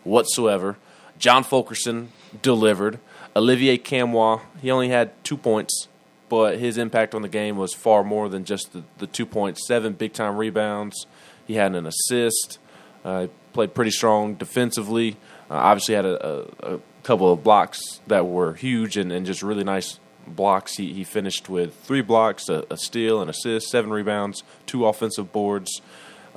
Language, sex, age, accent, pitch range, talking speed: English, male, 20-39, American, 100-115 Hz, 170 wpm